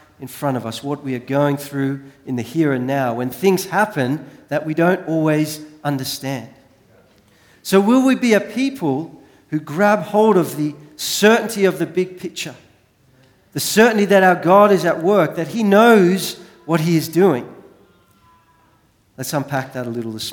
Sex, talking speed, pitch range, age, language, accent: male, 175 wpm, 145-185 Hz, 40-59, English, Australian